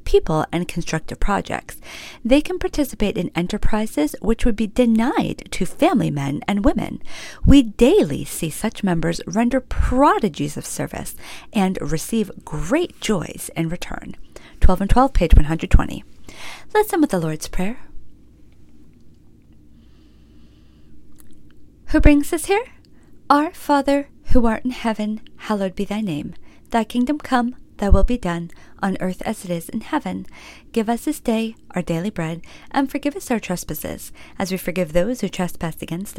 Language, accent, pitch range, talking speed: English, American, 165-260 Hz, 150 wpm